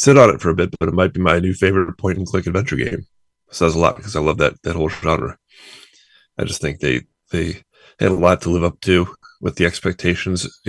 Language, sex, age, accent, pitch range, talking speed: English, male, 30-49, American, 80-90 Hz, 240 wpm